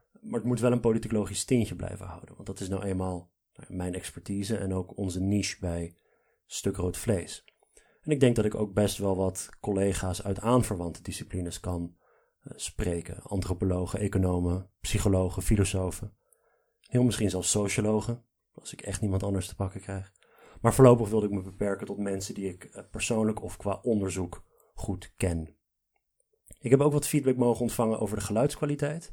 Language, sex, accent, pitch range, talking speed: Dutch, male, Dutch, 95-120 Hz, 165 wpm